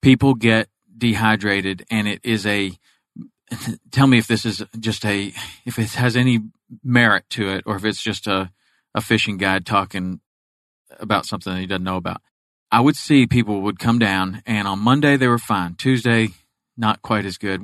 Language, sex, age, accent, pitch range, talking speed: English, male, 40-59, American, 100-125 Hz, 185 wpm